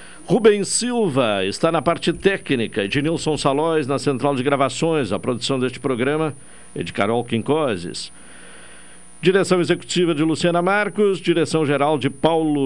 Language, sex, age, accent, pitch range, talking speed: Portuguese, male, 60-79, Brazilian, 130-170 Hz, 135 wpm